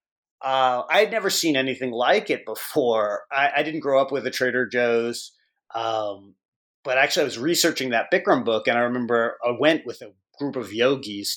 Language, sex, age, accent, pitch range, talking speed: English, male, 30-49, American, 120-155 Hz, 195 wpm